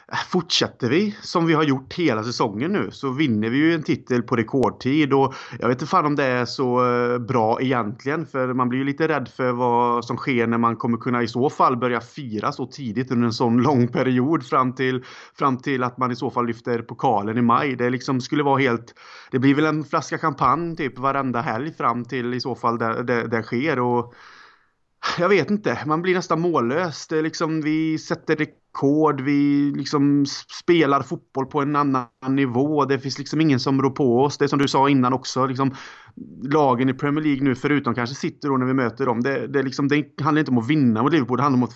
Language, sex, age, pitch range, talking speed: Swedish, male, 30-49, 125-145 Hz, 220 wpm